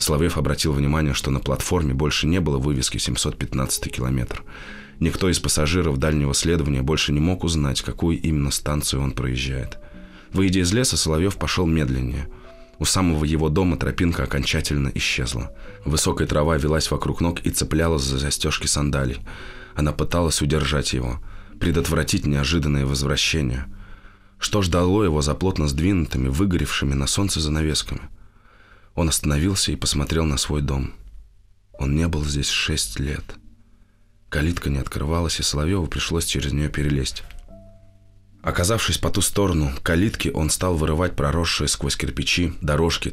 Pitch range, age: 70-90 Hz, 20-39